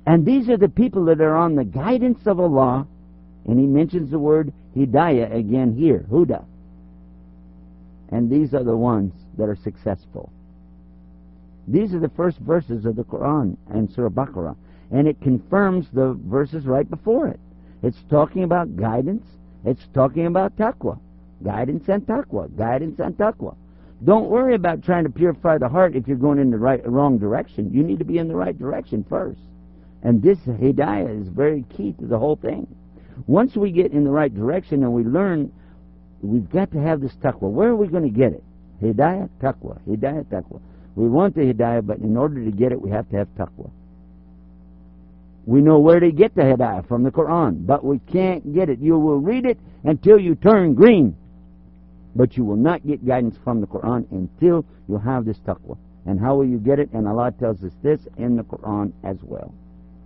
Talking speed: 190 wpm